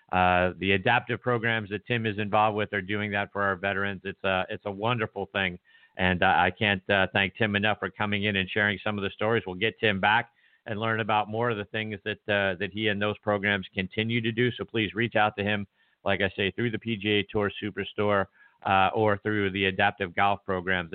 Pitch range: 100-120 Hz